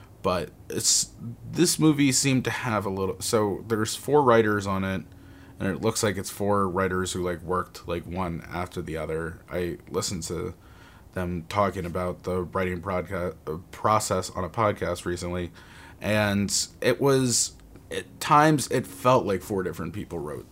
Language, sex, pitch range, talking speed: English, male, 90-115 Hz, 165 wpm